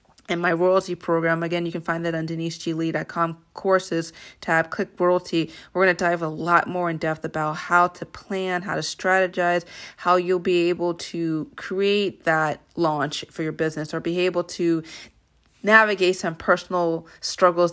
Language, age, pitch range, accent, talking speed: English, 30-49, 160-185 Hz, American, 170 wpm